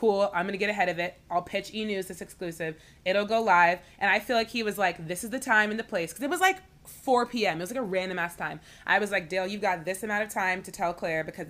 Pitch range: 175-230 Hz